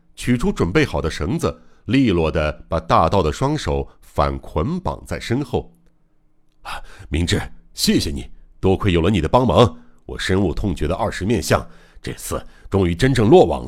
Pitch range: 80-125 Hz